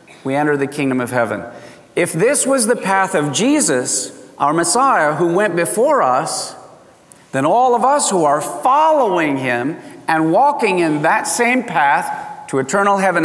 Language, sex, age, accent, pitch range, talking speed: English, male, 50-69, American, 150-195 Hz, 165 wpm